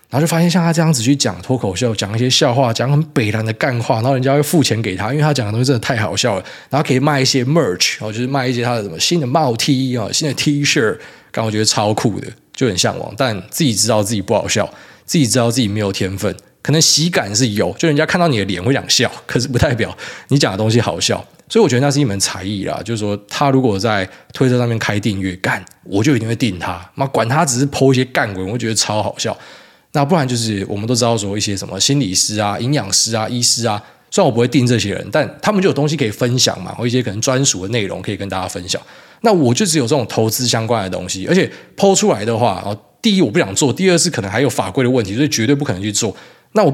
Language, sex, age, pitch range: Chinese, male, 20-39, 105-145 Hz